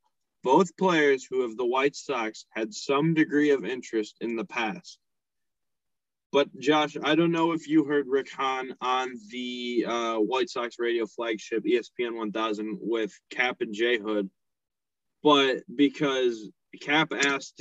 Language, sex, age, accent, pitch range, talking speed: English, male, 20-39, American, 115-180 Hz, 145 wpm